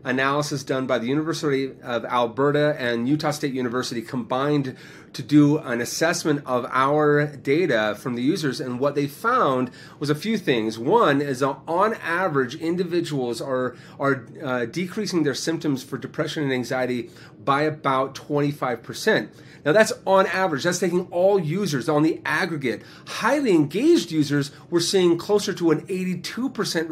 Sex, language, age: male, English, 30-49